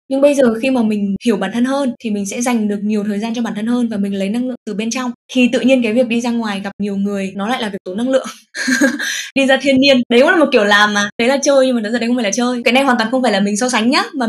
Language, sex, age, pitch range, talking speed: Vietnamese, female, 10-29, 215-260 Hz, 350 wpm